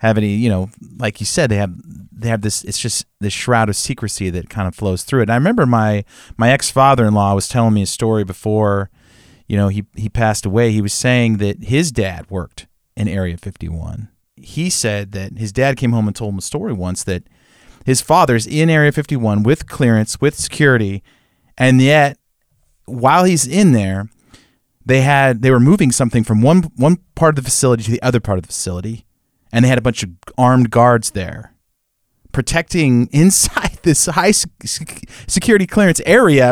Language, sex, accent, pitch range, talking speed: English, male, American, 105-145 Hz, 200 wpm